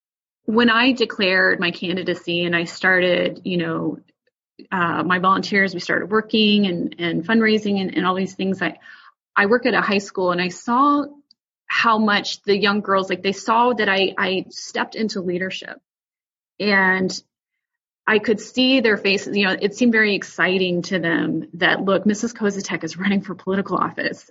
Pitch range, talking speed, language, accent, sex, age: 185-220 Hz, 175 wpm, English, American, female, 30-49